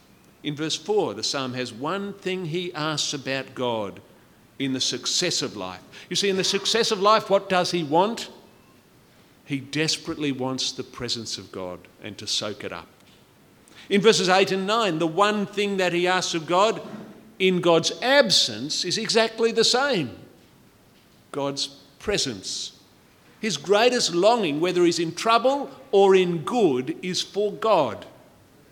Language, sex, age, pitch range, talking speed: English, male, 50-69, 130-195 Hz, 155 wpm